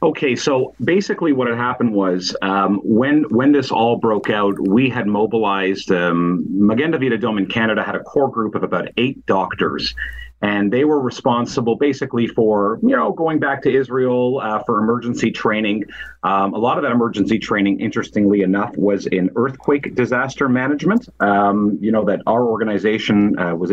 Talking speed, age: 175 wpm, 40-59